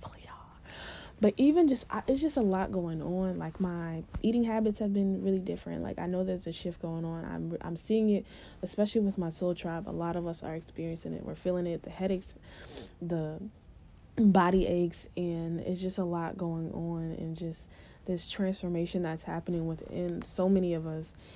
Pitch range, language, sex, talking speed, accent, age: 170-200 Hz, English, female, 190 wpm, American, 20-39